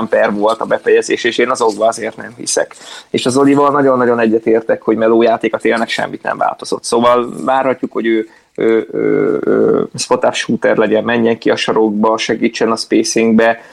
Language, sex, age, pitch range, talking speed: Hungarian, male, 20-39, 115-140 Hz, 170 wpm